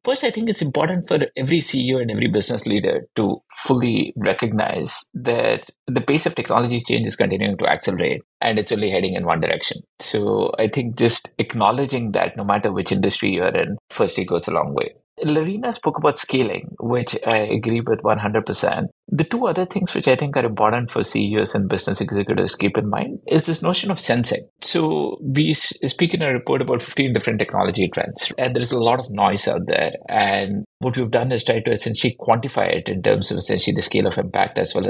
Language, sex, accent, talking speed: English, male, Indian, 210 wpm